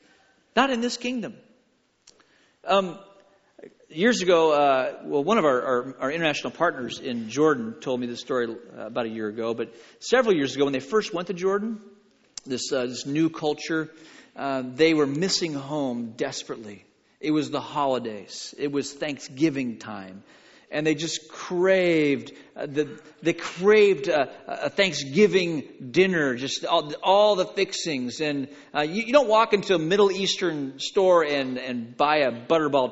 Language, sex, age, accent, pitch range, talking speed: English, male, 40-59, American, 150-220 Hz, 160 wpm